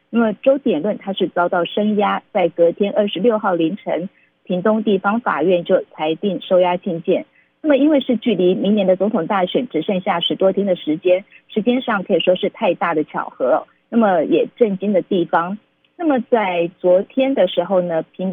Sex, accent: female, native